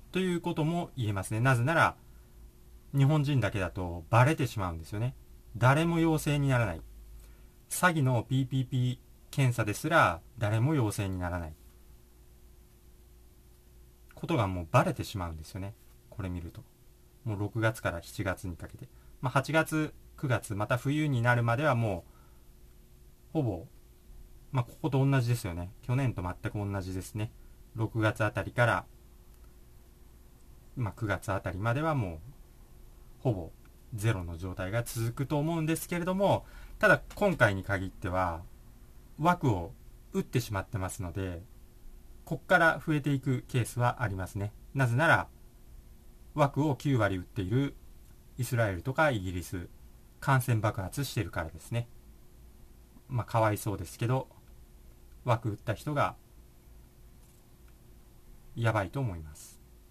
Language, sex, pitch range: Japanese, male, 85-130 Hz